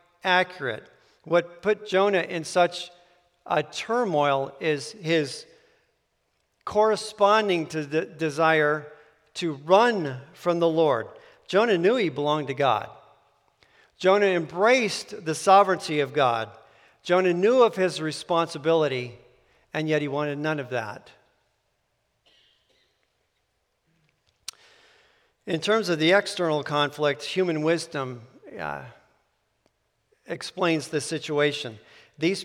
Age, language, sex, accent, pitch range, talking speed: 50-69, English, male, American, 135-175 Hz, 105 wpm